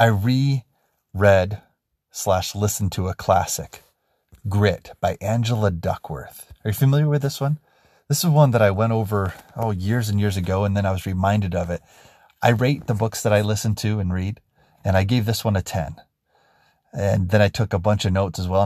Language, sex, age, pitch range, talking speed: English, male, 30-49, 95-110 Hz, 205 wpm